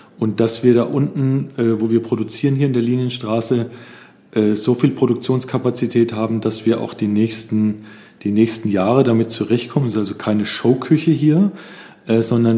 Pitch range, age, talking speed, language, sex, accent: 110-135 Hz, 40-59, 155 wpm, German, male, German